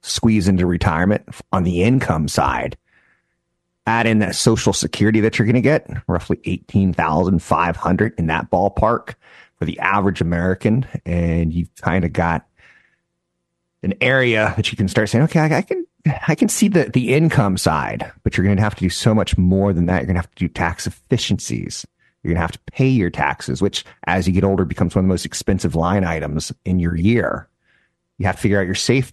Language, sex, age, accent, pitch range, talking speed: English, male, 30-49, American, 85-110 Hz, 205 wpm